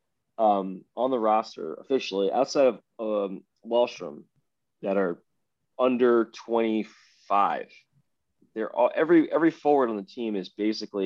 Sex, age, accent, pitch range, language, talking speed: male, 20-39, American, 100-115 Hz, English, 125 wpm